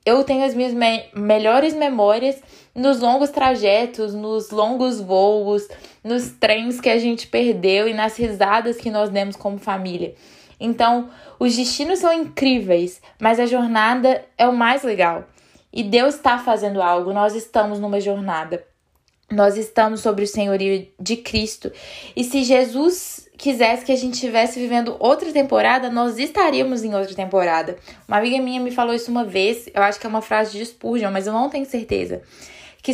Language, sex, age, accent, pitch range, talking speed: Portuguese, female, 10-29, Brazilian, 205-255 Hz, 170 wpm